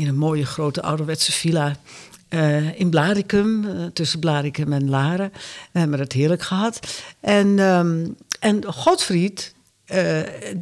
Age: 60-79